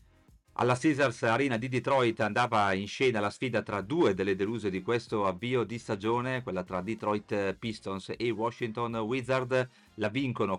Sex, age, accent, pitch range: male, 40-59, native, 100-120 Hz